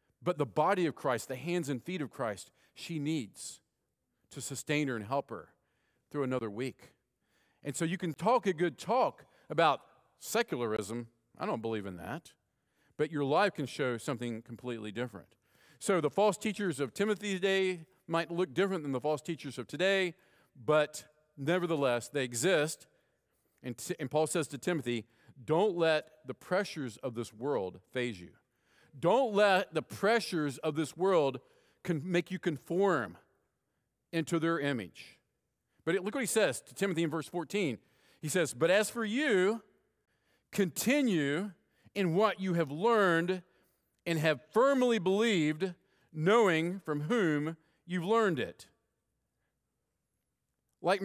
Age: 50-69